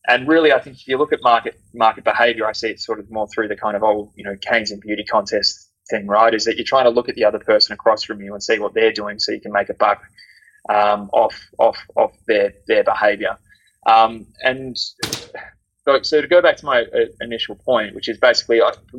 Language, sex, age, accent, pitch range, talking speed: English, male, 20-39, Australian, 105-125 Hz, 245 wpm